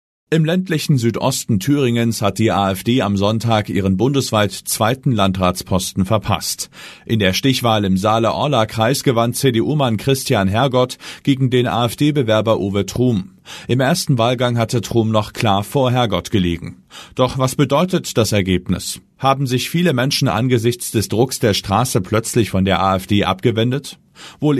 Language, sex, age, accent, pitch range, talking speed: German, male, 40-59, German, 100-130 Hz, 145 wpm